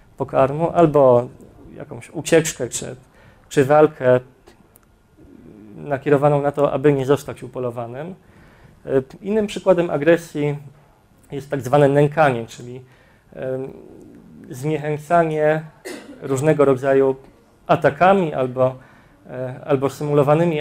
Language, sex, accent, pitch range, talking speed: Polish, male, native, 130-150 Hz, 80 wpm